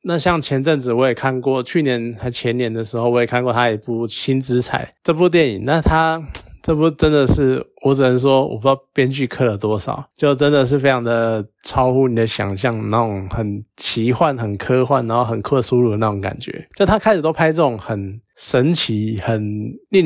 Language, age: Chinese, 20-39